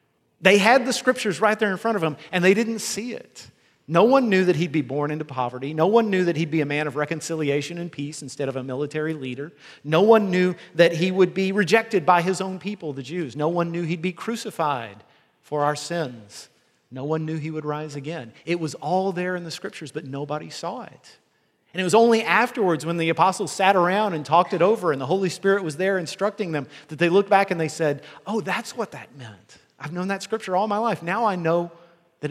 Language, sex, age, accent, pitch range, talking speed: English, male, 40-59, American, 145-190 Hz, 235 wpm